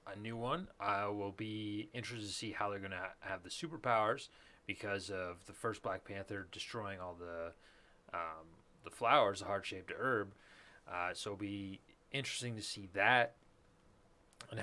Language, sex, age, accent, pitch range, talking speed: English, male, 30-49, American, 95-115 Hz, 155 wpm